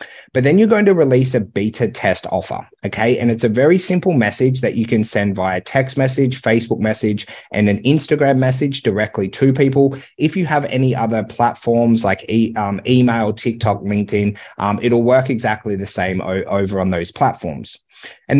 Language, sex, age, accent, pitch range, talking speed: English, male, 30-49, Australian, 105-135 Hz, 180 wpm